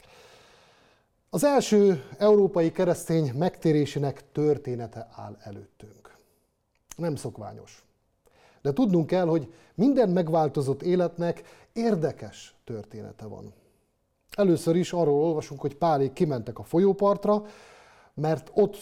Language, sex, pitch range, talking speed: Hungarian, male, 135-190 Hz, 100 wpm